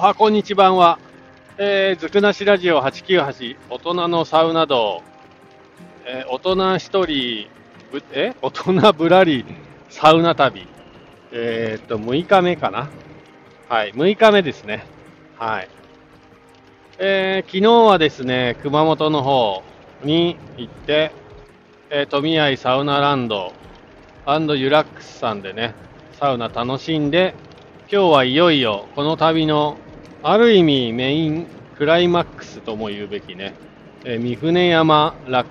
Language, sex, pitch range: Japanese, male, 125-175 Hz